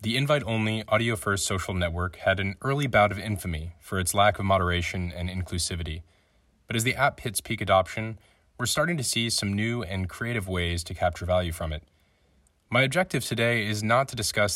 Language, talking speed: French, 190 wpm